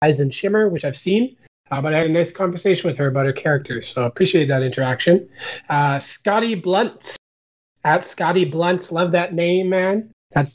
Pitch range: 140-185 Hz